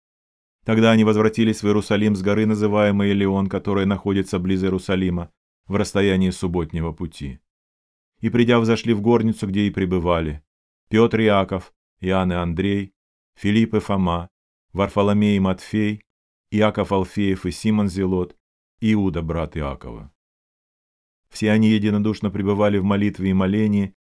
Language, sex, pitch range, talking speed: Russian, male, 90-110 Hz, 135 wpm